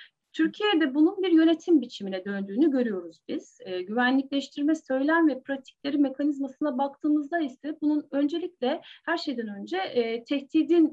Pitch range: 230-320 Hz